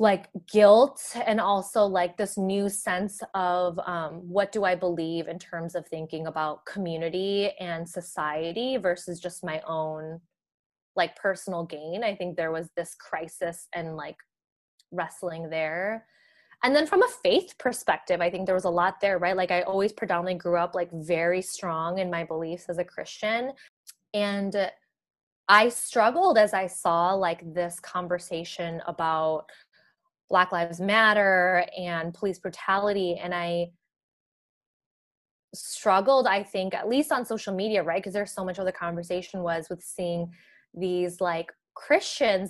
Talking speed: 150 wpm